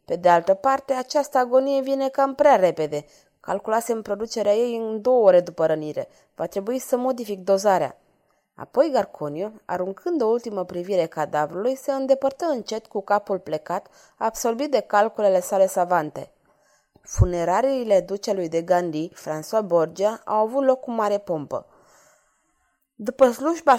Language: Romanian